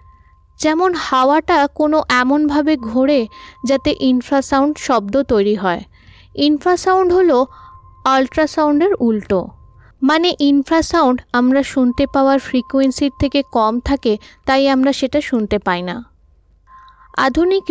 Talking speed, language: 100 wpm, Bengali